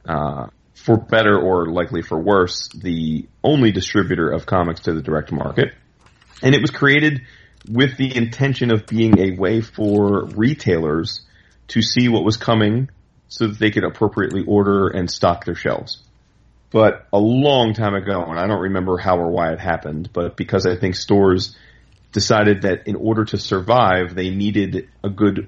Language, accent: English, American